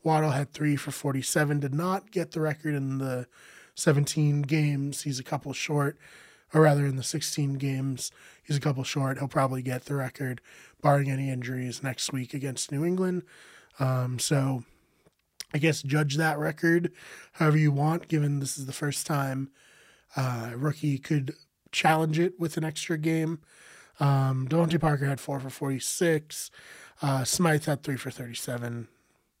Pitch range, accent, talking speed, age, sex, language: 135-160 Hz, American, 165 wpm, 20-39, male, English